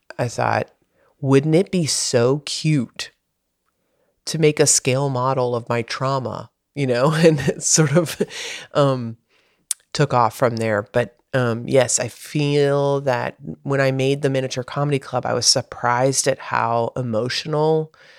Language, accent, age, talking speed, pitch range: English, American, 30-49, 150 wpm, 115-140 Hz